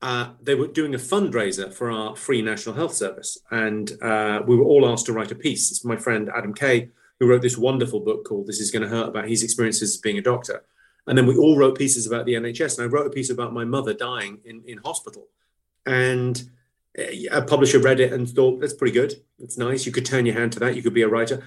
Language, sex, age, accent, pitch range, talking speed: English, male, 30-49, British, 120-150 Hz, 245 wpm